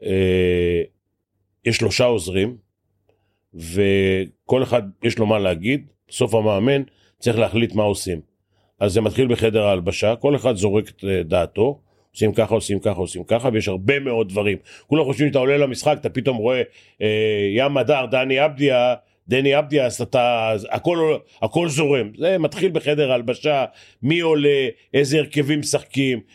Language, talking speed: Hebrew, 145 wpm